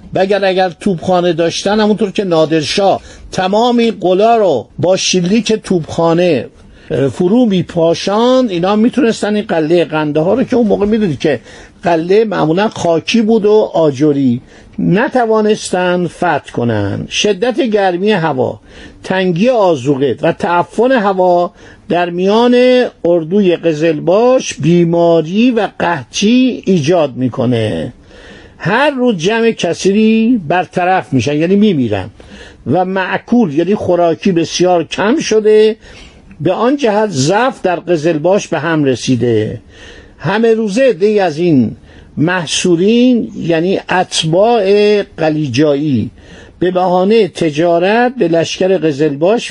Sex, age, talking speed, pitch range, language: male, 50-69, 110 wpm, 165-215 Hz, Persian